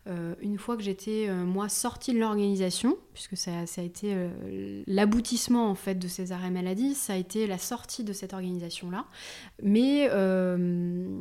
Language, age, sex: French, 20-39, female